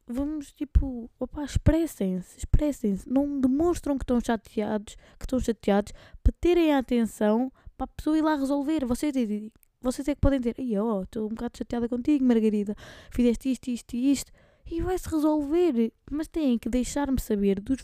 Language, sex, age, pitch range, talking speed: Portuguese, female, 20-39, 230-270 Hz, 170 wpm